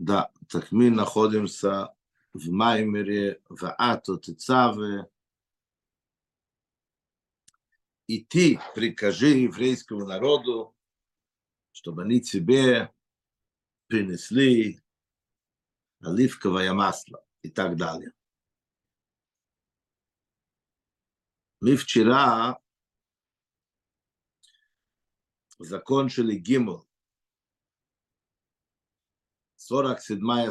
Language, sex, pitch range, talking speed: Russian, male, 100-130 Hz, 55 wpm